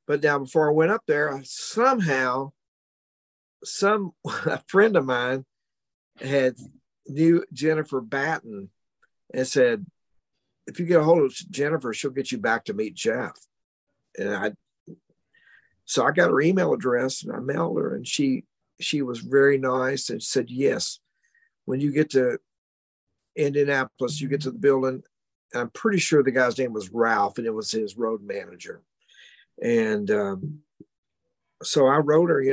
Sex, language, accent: male, English, American